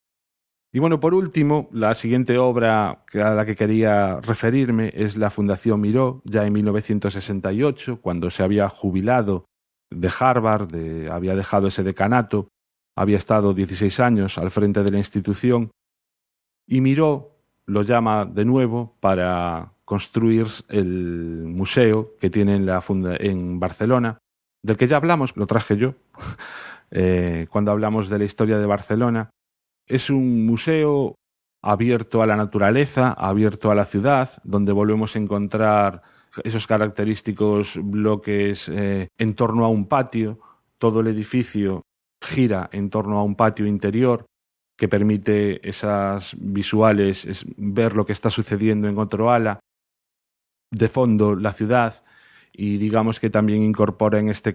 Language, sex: Spanish, male